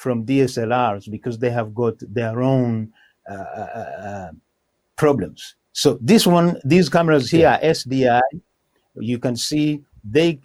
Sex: male